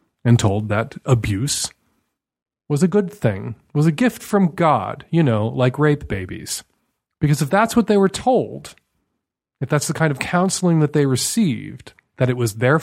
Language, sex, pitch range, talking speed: English, male, 115-150 Hz, 180 wpm